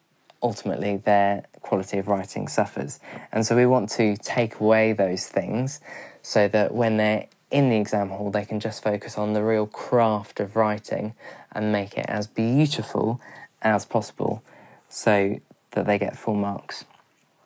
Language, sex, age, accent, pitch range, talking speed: English, male, 20-39, British, 105-115 Hz, 160 wpm